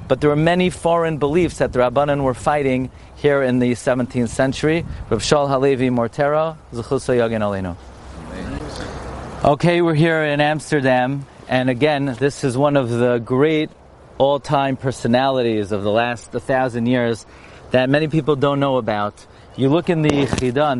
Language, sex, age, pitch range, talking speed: English, male, 40-59, 125-160 Hz, 155 wpm